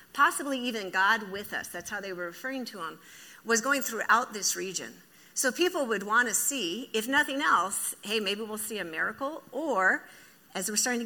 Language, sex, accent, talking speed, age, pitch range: English, female, American, 200 wpm, 50-69, 180-235 Hz